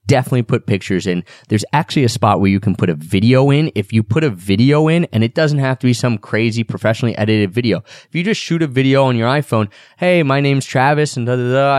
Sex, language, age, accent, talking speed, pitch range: male, English, 20-39, American, 250 wpm, 100-135 Hz